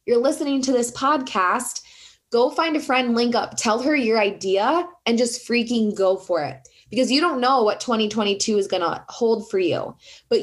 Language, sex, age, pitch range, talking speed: English, female, 20-39, 200-260 Hz, 190 wpm